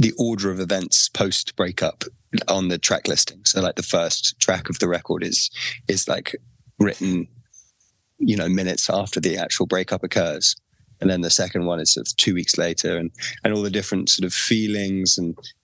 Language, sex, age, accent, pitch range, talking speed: English, male, 20-39, British, 95-110 Hz, 185 wpm